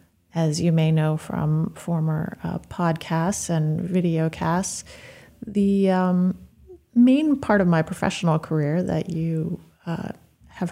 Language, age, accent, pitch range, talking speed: English, 30-49, American, 165-195 Hz, 125 wpm